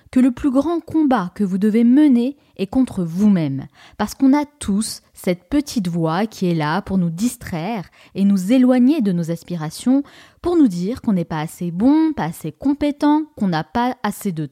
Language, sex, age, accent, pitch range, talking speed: French, female, 20-39, French, 180-265 Hz, 195 wpm